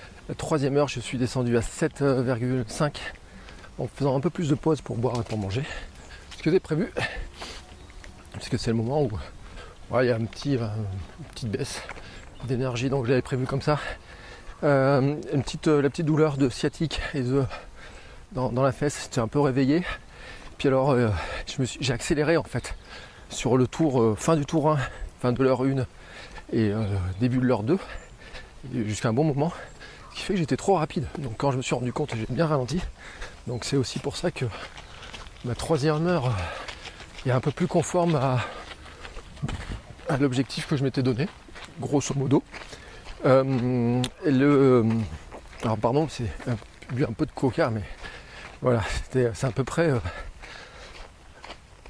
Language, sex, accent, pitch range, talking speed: French, male, French, 115-150 Hz, 175 wpm